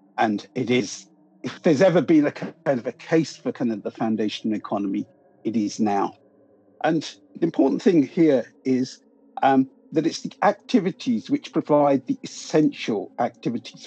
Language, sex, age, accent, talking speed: English, male, 50-69, British, 160 wpm